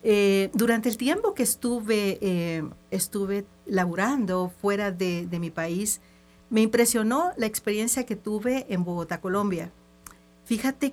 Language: Spanish